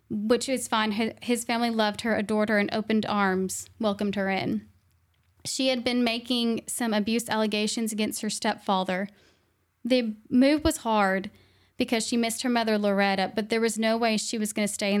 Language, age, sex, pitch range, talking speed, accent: English, 10-29, female, 205-245 Hz, 185 wpm, American